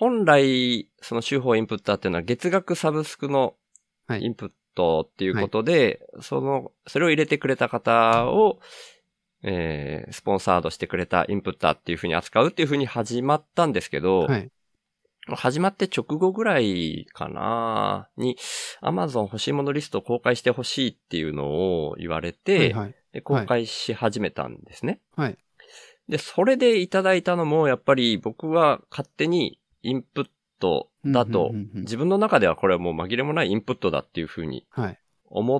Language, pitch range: Japanese, 105-155 Hz